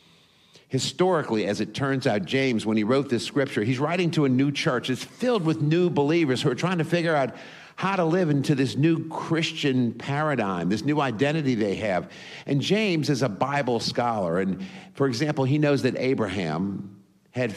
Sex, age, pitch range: male, 50-69, 110-150 Hz